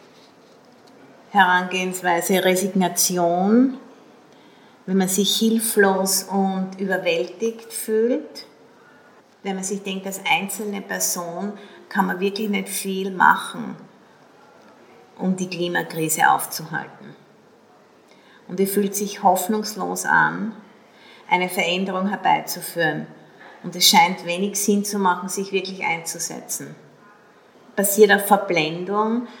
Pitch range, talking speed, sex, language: 175-205 Hz, 100 wpm, female, English